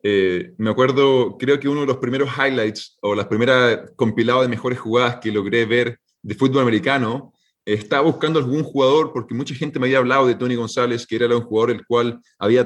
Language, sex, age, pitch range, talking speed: Spanish, male, 20-39, 110-125 Hz, 210 wpm